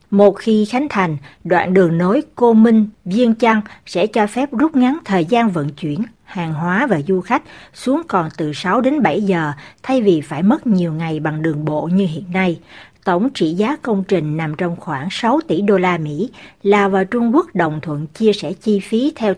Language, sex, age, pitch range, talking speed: Vietnamese, female, 60-79, 170-230 Hz, 210 wpm